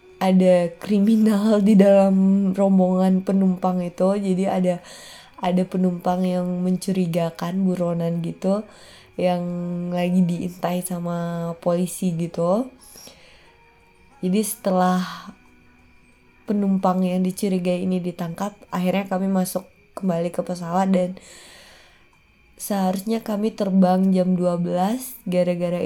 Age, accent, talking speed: 20-39, native, 95 wpm